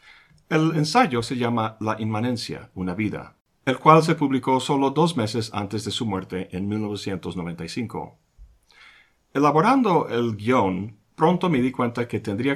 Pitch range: 95-140 Hz